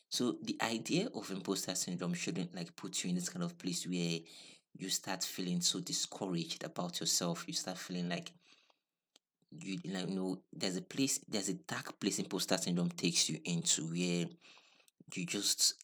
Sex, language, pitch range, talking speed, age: male, English, 85-100 Hz, 170 wpm, 30-49